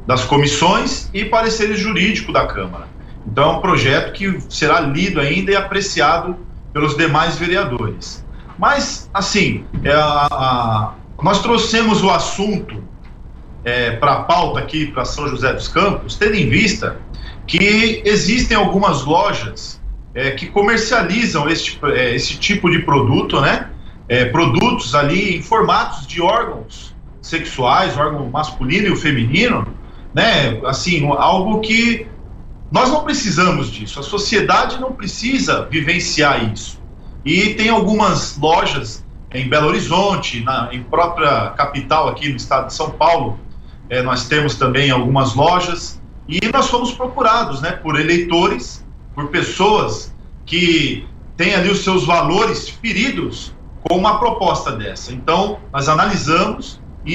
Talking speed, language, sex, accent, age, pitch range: 135 wpm, Portuguese, male, Brazilian, 40-59, 135-200 Hz